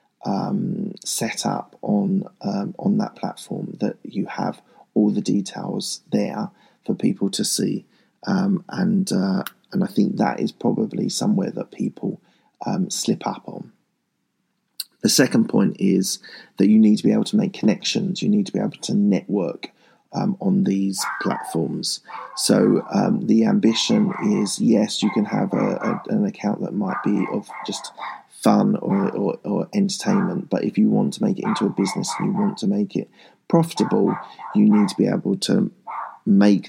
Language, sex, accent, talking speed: English, male, British, 170 wpm